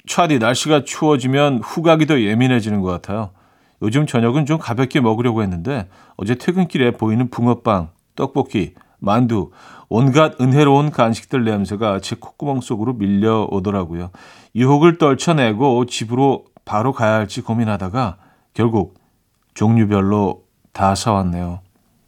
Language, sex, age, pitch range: Korean, male, 40-59, 100-145 Hz